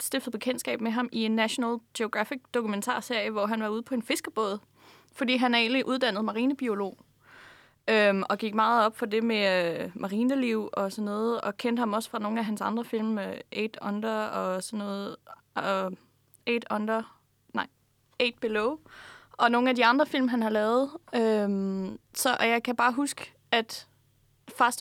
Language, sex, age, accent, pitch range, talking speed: Danish, female, 20-39, native, 215-250 Hz, 180 wpm